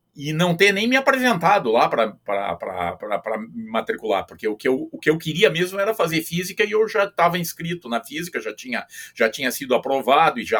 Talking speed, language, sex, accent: 190 wpm, Portuguese, male, Brazilian